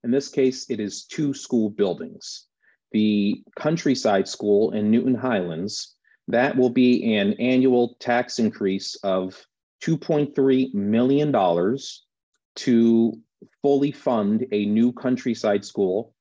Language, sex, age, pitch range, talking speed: English, male, 40-59, 100-130 Hz, 115 wpm